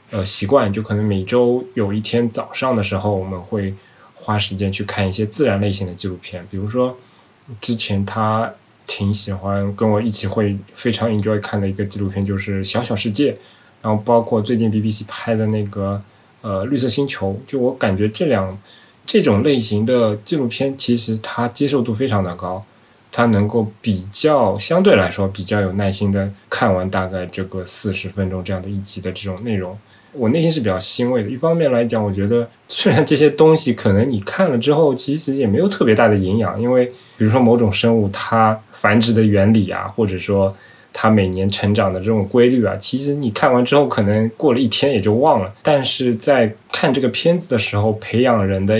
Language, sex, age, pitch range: Chinese, male, 20-39, 100-120 Hz